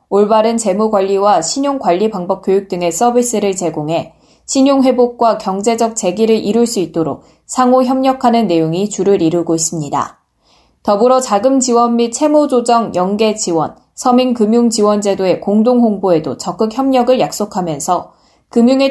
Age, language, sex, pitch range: 20-39, Korean, female, 190-250 Hz